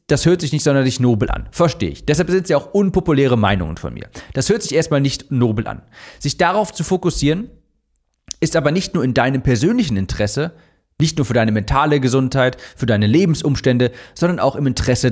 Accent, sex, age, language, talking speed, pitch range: German, male, 40-59, German, 200 wpm, 110-165 Hz